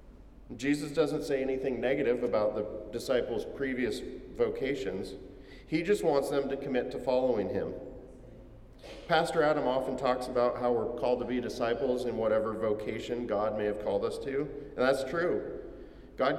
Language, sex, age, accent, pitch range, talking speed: English, male, 40-59, American, 120-140 Hz, 155 wpm